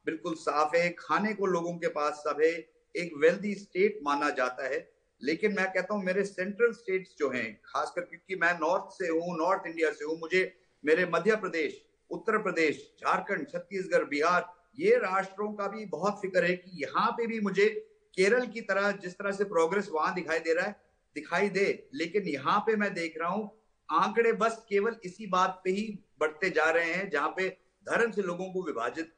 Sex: male